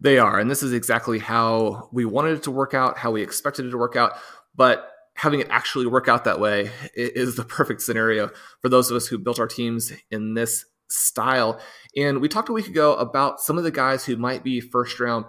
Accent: American